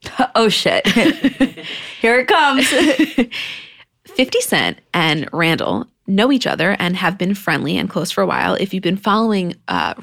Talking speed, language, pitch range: 155 wpm, English, 185-250 Hz